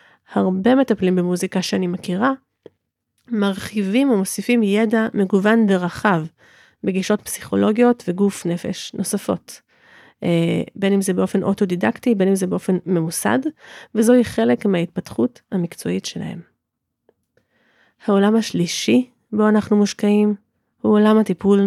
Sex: female